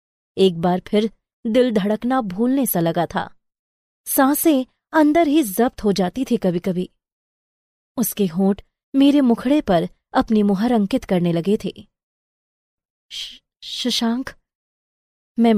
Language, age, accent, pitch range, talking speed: Hindi, 20-39, native, 190-245 Hz, 120 wpm